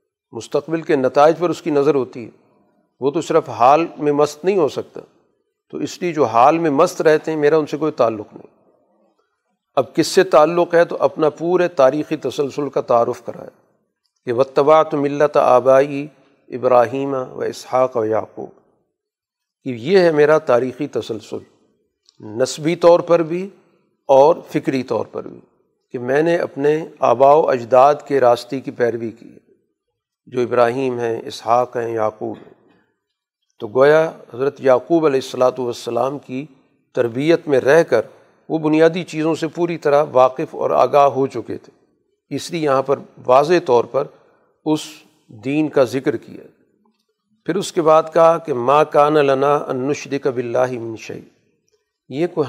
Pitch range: 135-170 Hz